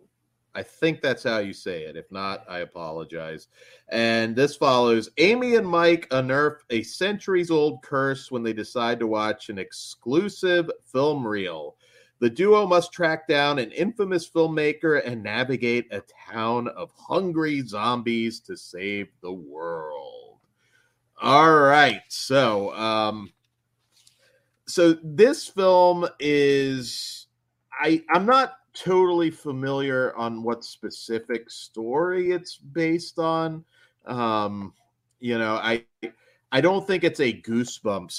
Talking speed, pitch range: 125 wpm, 110-170 Hz